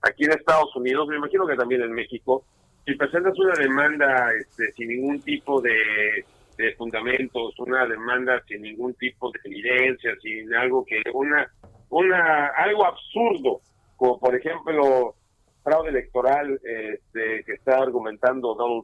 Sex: male